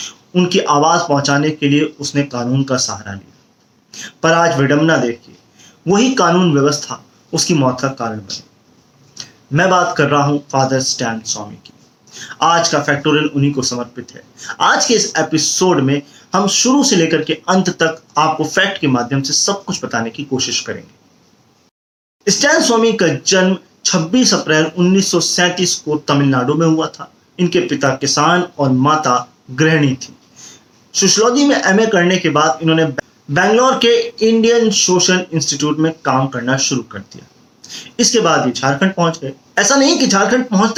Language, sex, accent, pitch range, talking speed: Hindi, male, native, 135-190 Hz, 130 wpm